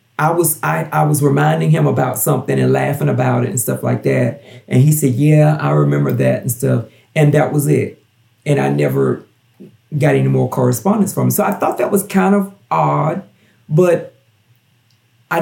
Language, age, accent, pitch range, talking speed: English, 40-59, American, 105-150 Hz, 190 wpm